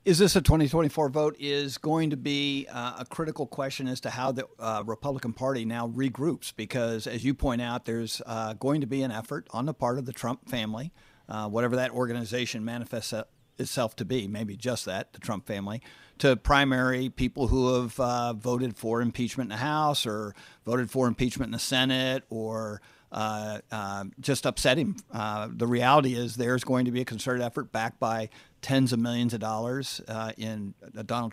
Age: 50-69